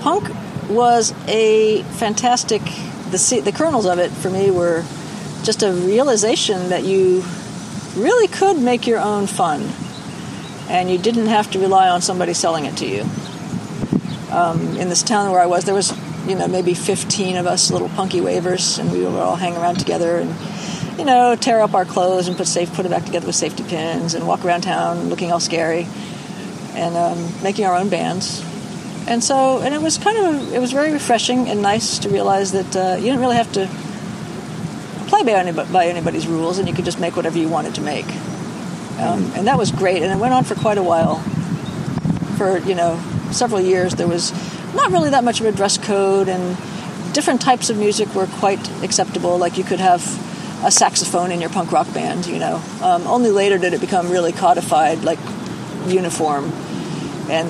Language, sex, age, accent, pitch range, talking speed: English, female, 50-69, American, 180-215 Hz, 195 wpm